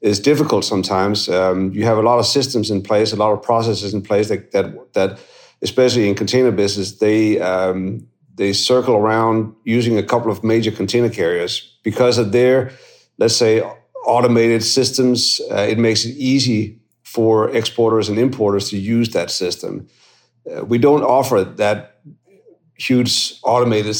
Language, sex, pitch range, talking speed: English, male, 105-125 Hz, 160 wpm